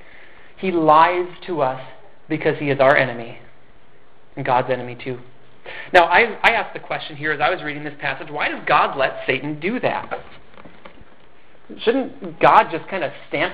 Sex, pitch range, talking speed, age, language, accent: male, 150-205 Hz, 175 wpm, 30-49, English, American